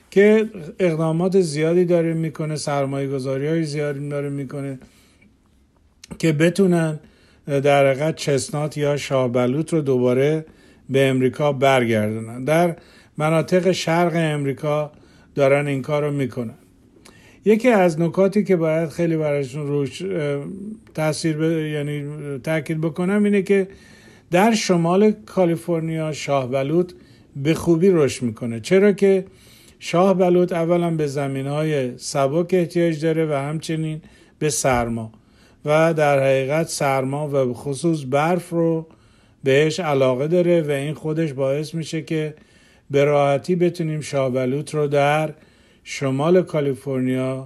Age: 50-69